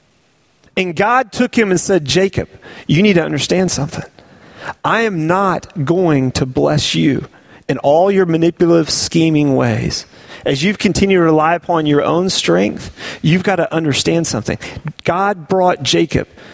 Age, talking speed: 40-59, 150 wpm